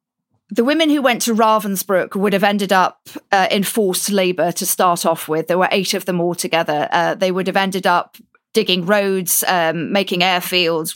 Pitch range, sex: 175-205 Hz, female